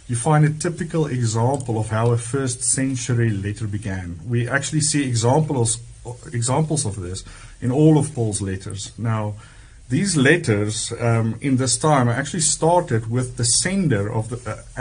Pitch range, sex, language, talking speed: 110-130 Hz, male, English, 160 wpm